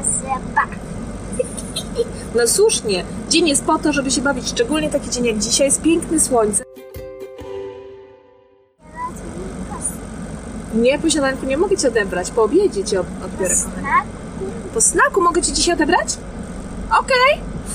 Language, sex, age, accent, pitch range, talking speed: Polish, female, 20-39, native, 220-325 Hz, 120 wpm